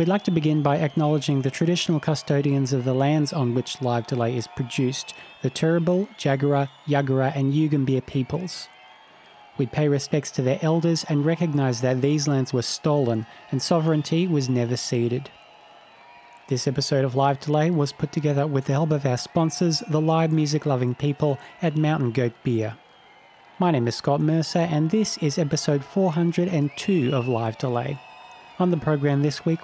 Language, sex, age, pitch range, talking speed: English, male, 30-49, 135-165 Hz, 170 wpm